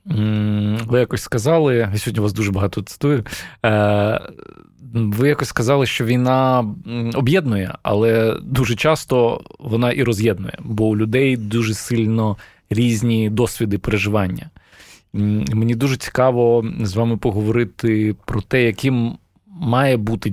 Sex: male